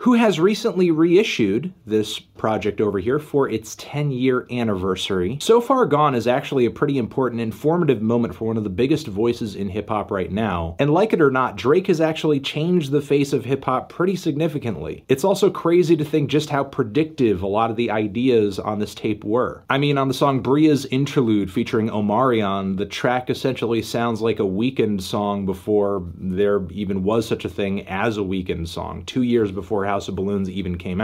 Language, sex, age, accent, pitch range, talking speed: English, male, 30-49, American, 105-140 Hz, 195 wpm